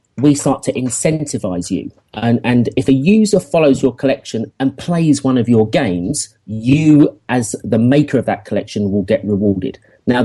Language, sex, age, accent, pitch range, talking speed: English, male, 40-59, British, 105-140 Hz, 175 wpm